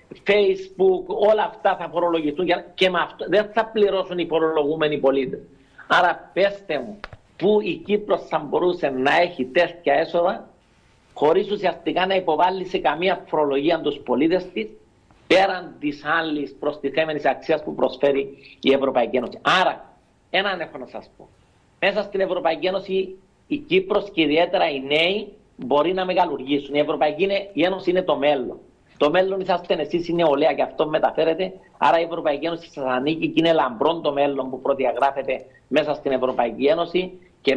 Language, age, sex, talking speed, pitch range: Greek, 50-69, male, 160 wpm, 145-185 Hz